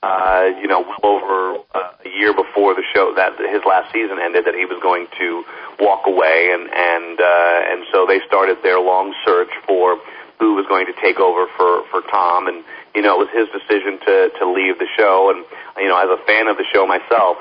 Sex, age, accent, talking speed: male, 40-59, American, 220 wpm